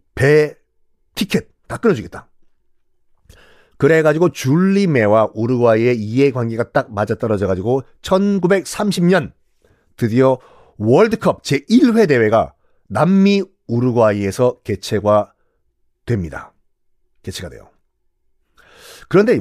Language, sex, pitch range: Korean, male, 115-185 Hz